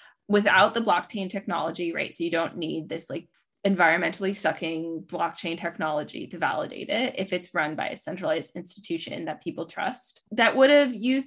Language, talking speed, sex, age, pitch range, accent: English, 170 wpm, female, 20-39, 185-230 Hz, American